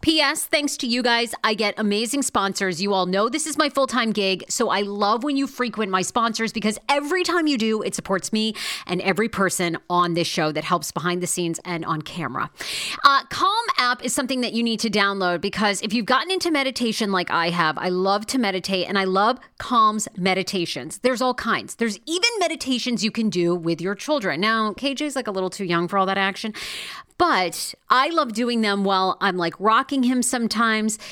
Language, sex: English, female